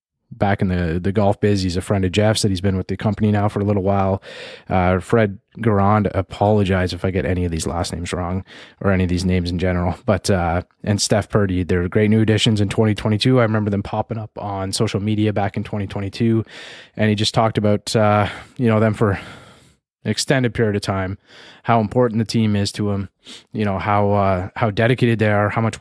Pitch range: 95-110 Hz